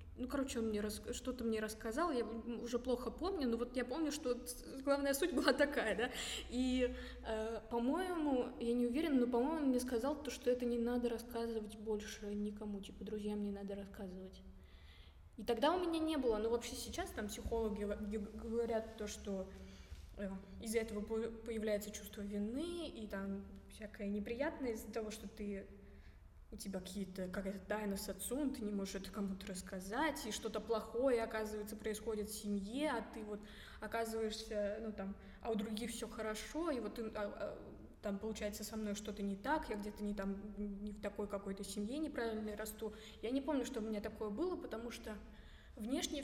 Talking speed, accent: 175 wpm, native